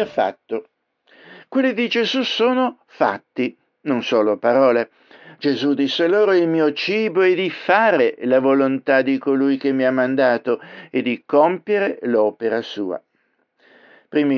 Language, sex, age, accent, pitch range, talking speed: Italian, male, 60-79, native, 130-175 Hz, 135 wpm